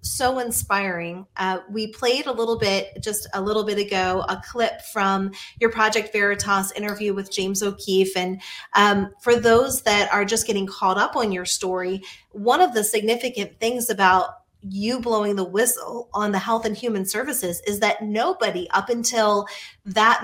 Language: English